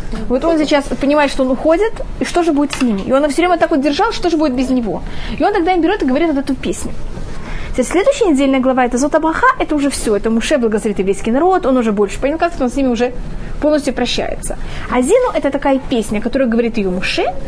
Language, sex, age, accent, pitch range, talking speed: Russian, female, 20-39, native, 240-315 Hz, 235 wpm